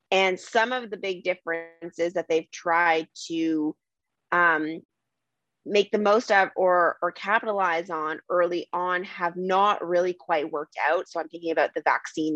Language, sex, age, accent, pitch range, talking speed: English, female, 20-39, American, 165-195 Hz, 160 wpm